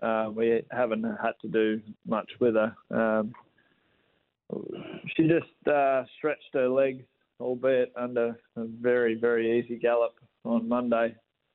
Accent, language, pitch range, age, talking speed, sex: Australian, English, 115-125 Hz, 20-39, 130 wpm, male